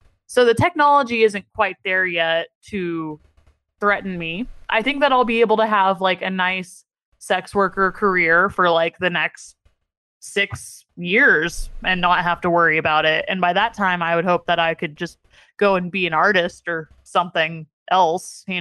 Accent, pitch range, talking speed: American, 170-200 Hz, 185 wpm